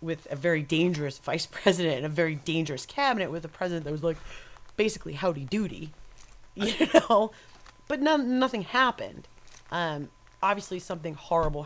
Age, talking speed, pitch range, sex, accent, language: 30-49, 150 wpm, 140-195 Hz, female, American, English